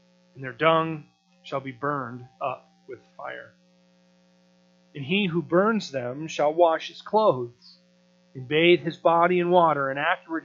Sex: male